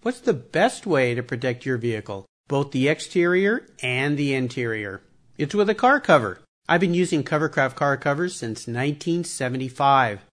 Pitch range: 125-185 Hz